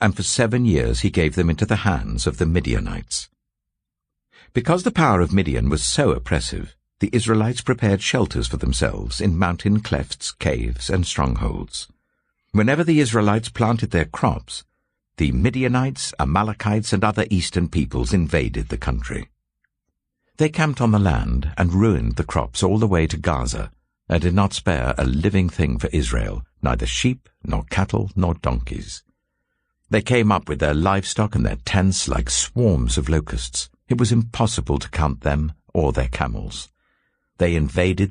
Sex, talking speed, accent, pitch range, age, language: male, 160 wpm, British, 75-105 Hz, 60-79, English